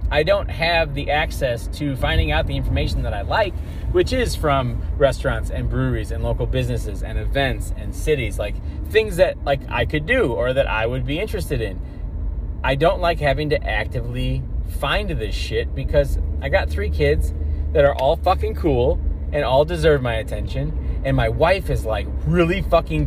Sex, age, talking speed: male, 30-49, 185 wpm